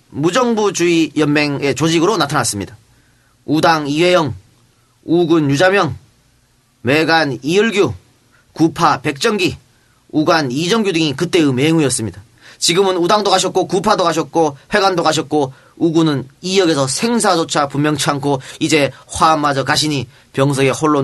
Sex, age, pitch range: male, 30-49, 135-180 Hz